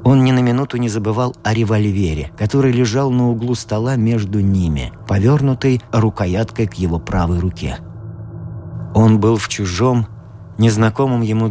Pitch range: 105-125 Hz